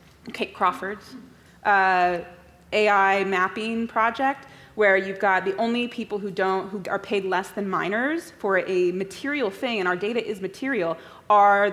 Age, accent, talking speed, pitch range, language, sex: 30-49, American, 155 wpm, 185-220 Hz, English, female